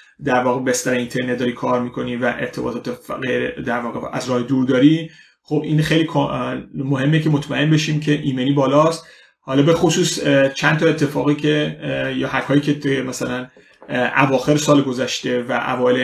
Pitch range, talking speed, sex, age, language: 130-155 Hz, 155 wpm, male, 30-49, Persian